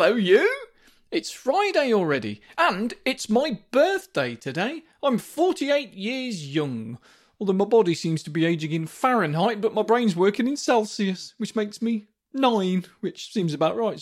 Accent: British